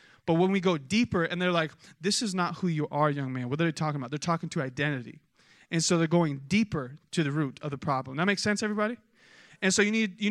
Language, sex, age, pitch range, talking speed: English, male, 20-39, 160-205 Hz, 260 wpm